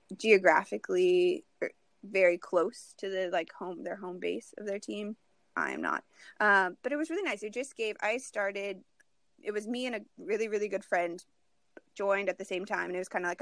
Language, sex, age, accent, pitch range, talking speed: English, female, 20-39, American, 185-220 Hz, 205 wpm